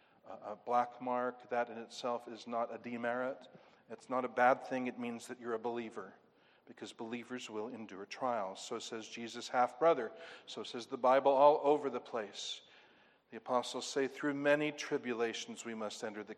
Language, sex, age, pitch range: English, male, 50-69, 120-145 Hz